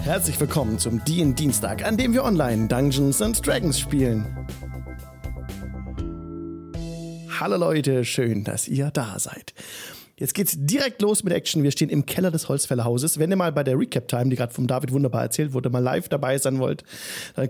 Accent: German